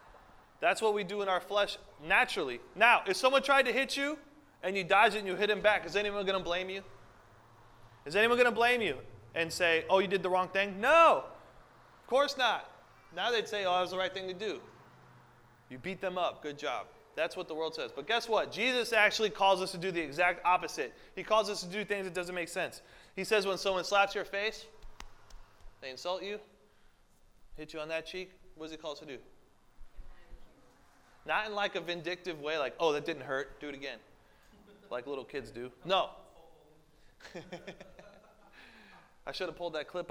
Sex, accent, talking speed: male, American, 205 wpm